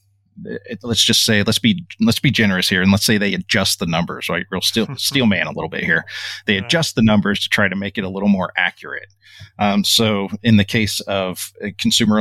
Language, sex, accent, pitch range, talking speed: English, male, American, 95-105 Hz, 220 wpm